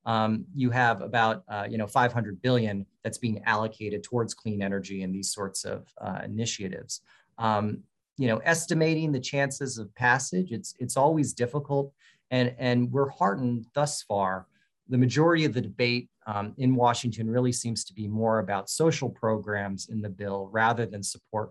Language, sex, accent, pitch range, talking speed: English, male, American, 100-125 Hz, 170 wpm